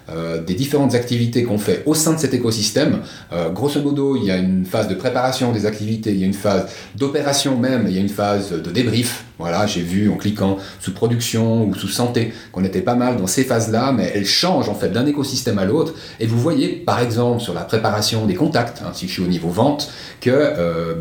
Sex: male